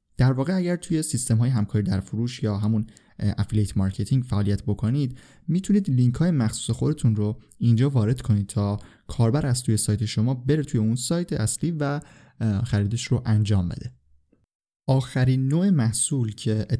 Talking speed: 155 wpm